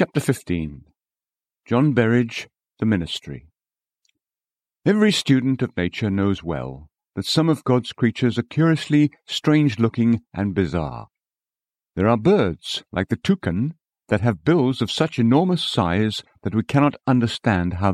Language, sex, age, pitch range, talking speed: English, male, 50-69, 100-135 Hz, 135 wpm